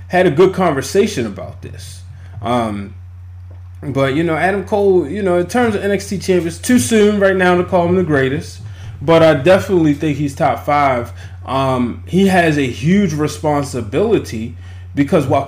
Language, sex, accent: English, male, American